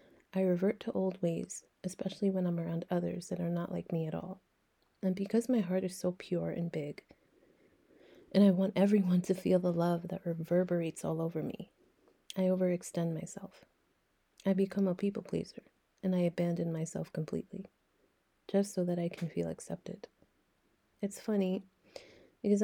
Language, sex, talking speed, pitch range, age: English, female, 165 wpm, 175-200 Hz, 30-49